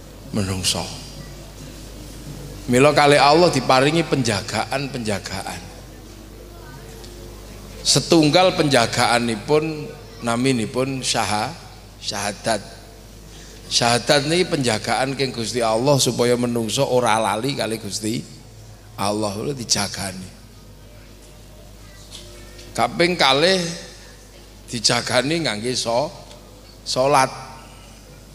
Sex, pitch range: male, 110-140 Hz